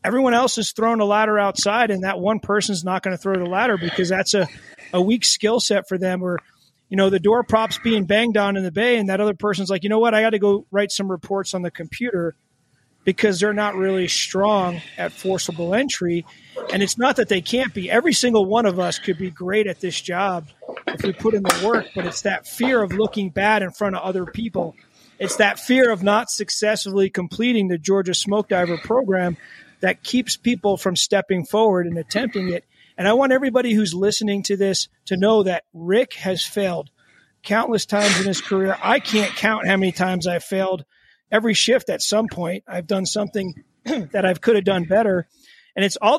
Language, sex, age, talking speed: English, male, 30-49, 215 wpm